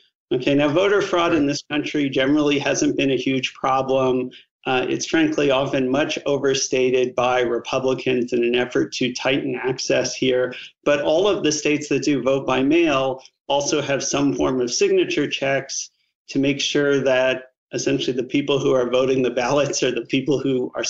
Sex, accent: male, American